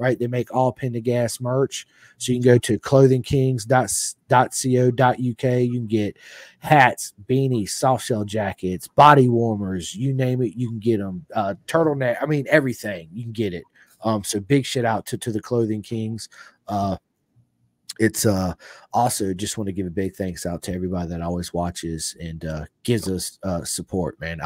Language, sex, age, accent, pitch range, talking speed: English, male, 30-49, American, 100-130 Hz, 175 wpm